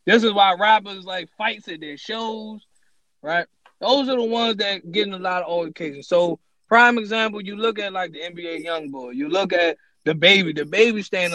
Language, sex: English, male